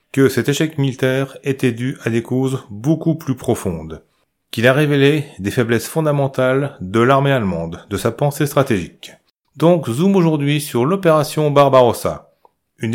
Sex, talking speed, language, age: male, 150 wpm, French, 30-49